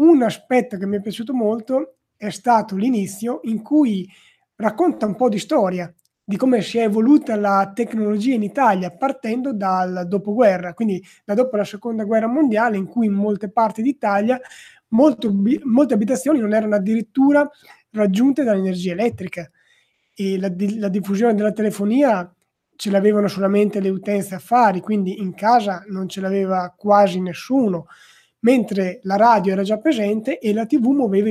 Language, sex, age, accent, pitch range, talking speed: Italian, male, 20-39, native, 190-230 Hz, 155 wpm